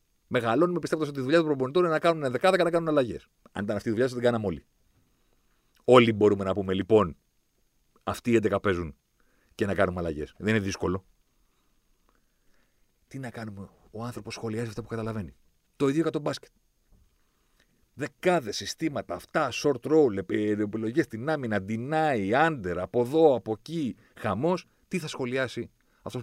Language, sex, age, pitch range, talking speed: Greek, male, 40-59, 95-140 Hz, 165 wpm